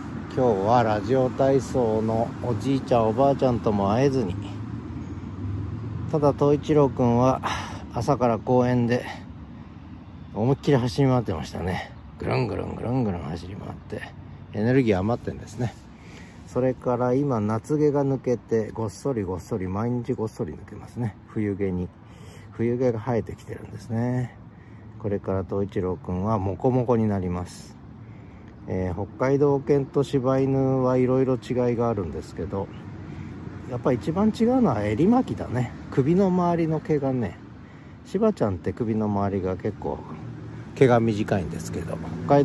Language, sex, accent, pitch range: Japanese, male, native, 100-130 Hz